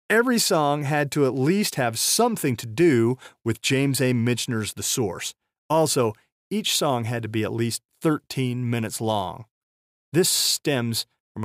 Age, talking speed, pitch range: 40-59, 155 wpm, 115-160 Hz